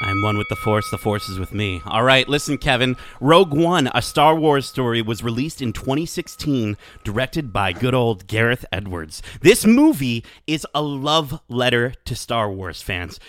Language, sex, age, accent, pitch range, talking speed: English, male, 30-49, American, 115-165 Hz, 180 wpm